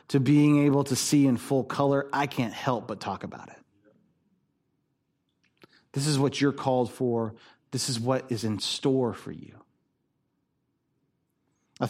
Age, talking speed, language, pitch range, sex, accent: 30-49, 150 wpm, English, 130-180 Hz, male, American